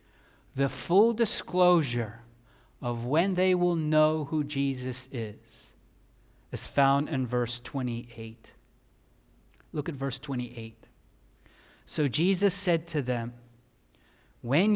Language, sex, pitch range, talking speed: English, male, 125-170 Hz, 105 wpm